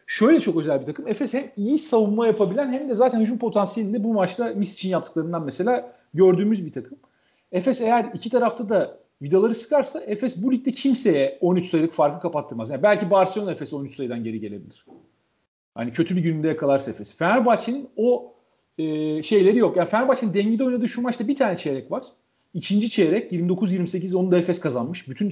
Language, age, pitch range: Turkish, 40-59, 145-220 Hz